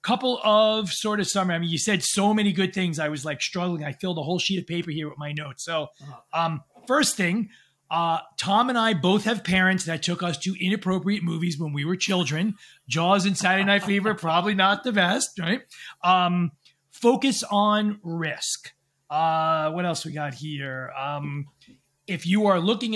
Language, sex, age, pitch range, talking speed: English, male, 30-49, 155-195 Hz, 195 wpm